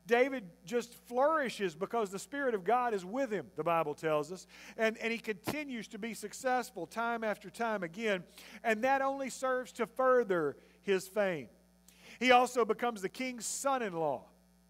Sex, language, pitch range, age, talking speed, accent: male, English, 170-235 Hz, 50-69, 165 wpm, American